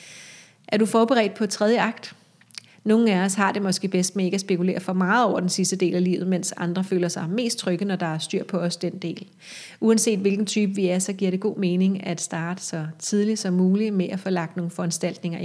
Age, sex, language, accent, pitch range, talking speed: 30-49, female, Danish, native, 180-200 Hz, 235 wpm